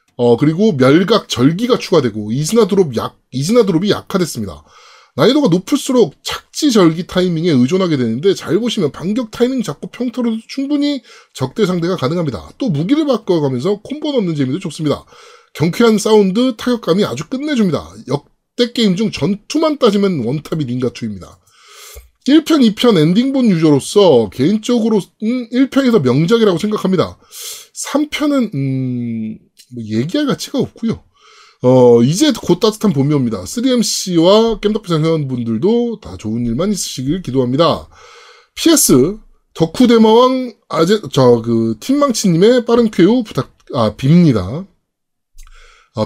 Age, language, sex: 20-39, Korean, male